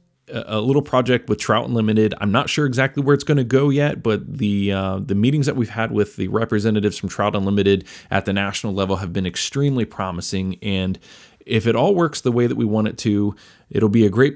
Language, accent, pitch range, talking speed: English, American, 100-120 Hz, 225 wpm